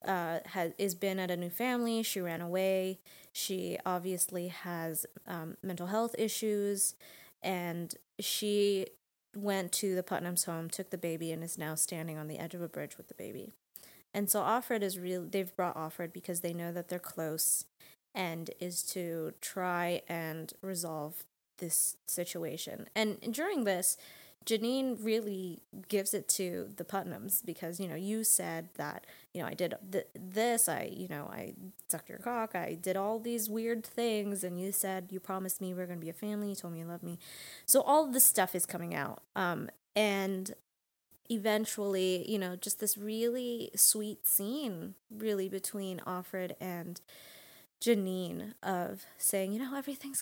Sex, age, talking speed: female, 20-39, 170 wpm